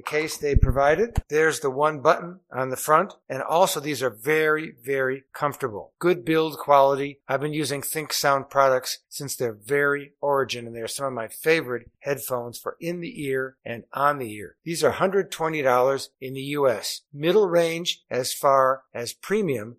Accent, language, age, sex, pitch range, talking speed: American, English, 60-79, male, 130-160 Hz, 175 wpm